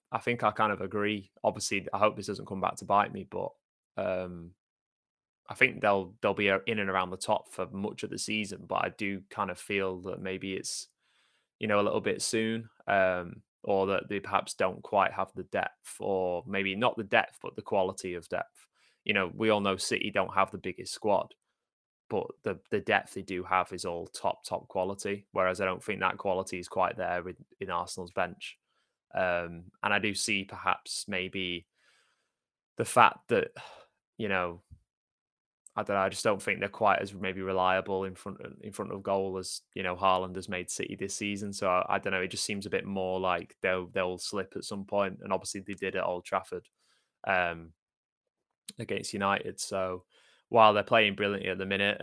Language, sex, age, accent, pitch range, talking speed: English, male, 20-39, British, 95-100 Hz, 205 wpm